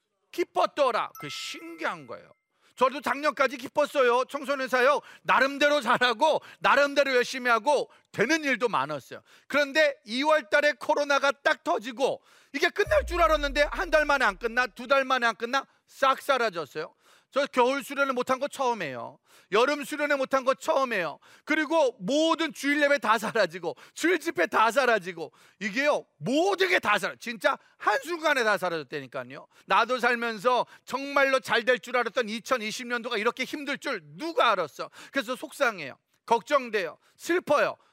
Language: Korean